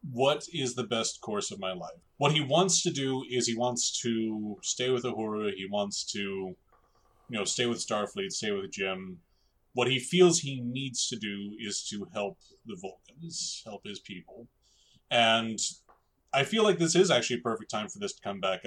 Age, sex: 30-49, male